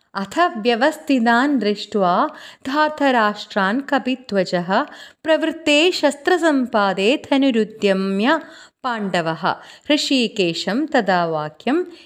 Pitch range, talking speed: 180-260 Hz, 50 wpm